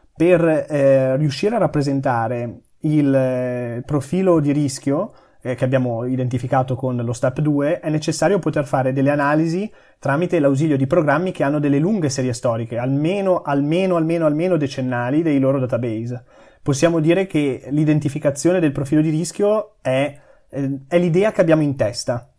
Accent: native